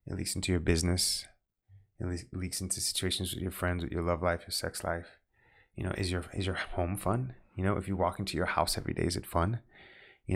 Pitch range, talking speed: 95-115 Hz, 235 wpm